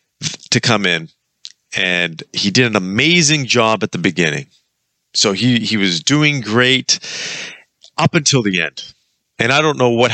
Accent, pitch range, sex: American, 95-130 Hz, male